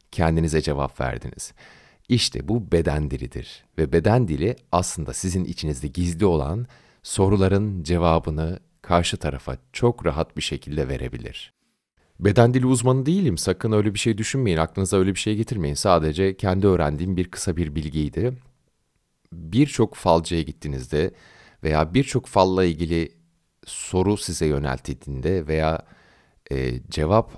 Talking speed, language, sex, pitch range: 125 wpm, Turkish, male, 80-120 Hz